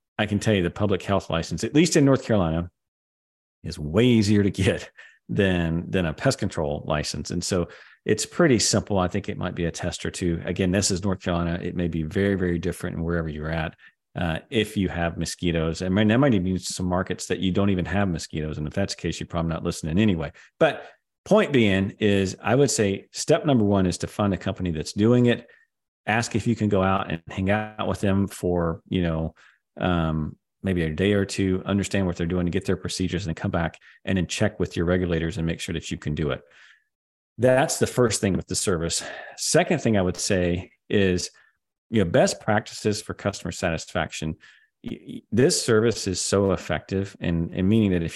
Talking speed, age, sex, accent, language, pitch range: 220 wpm, 40-59, male, American, English, 85-105 Hz